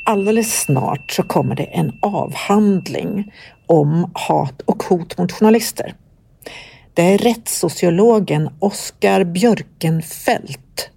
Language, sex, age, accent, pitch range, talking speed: Swedish, female, 60-79, native, 160-205 Hz, 100 wpm